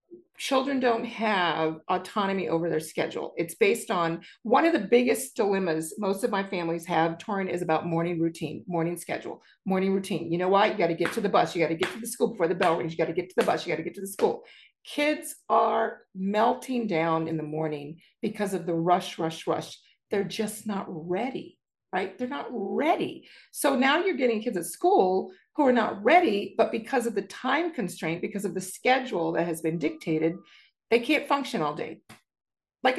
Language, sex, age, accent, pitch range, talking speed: English, female, 40-59, American, 170-260 Hz, 210 wpm